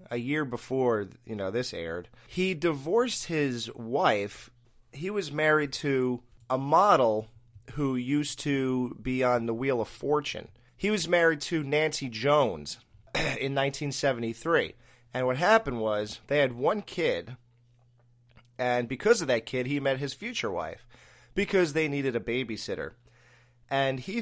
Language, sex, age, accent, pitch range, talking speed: English, male, 30-49, American, 115-145 Hz, 145 wpm